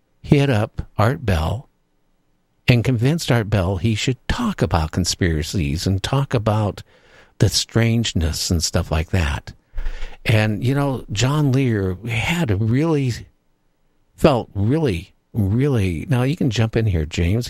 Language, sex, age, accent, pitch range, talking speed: English, male, 60-79, American, 85-125 Hz, 135 wpm